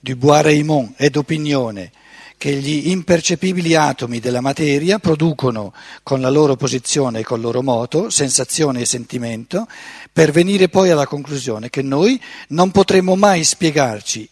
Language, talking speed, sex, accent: Italian, 145 wpm, male, native